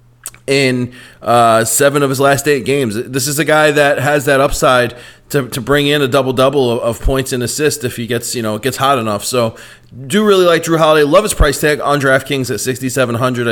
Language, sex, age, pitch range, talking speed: English, male, 30-49, 125-150 Hz, 220 wpm